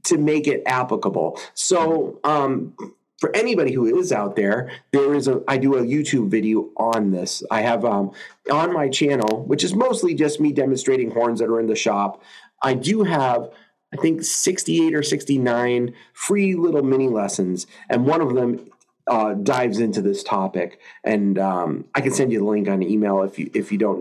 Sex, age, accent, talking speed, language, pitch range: male, 30-49, American, 190 wpm, English, 115-165 Hz